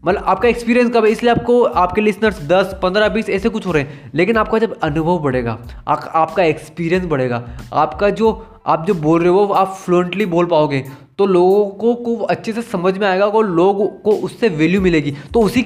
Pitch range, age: 160-210 Hz, 20-39